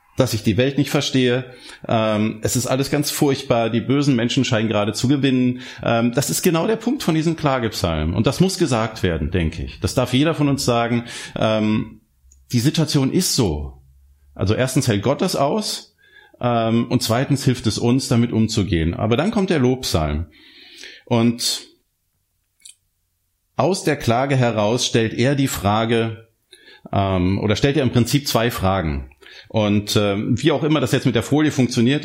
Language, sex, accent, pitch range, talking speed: German, male, German, 105-135 Hz, 165 wpm